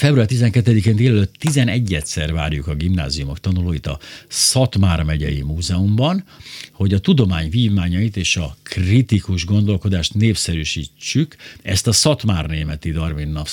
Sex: male